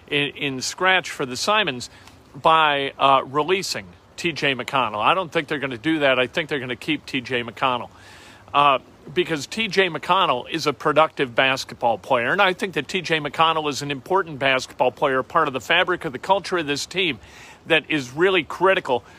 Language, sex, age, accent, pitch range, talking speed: English, male, 50-69, American, 135-185 Hz, 190 wpm